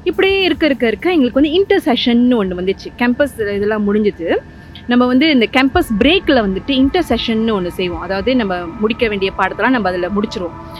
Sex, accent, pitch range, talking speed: female, native, 200-275 Hz, 170 wpm